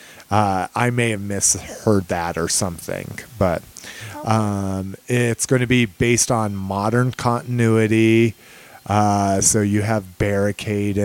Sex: male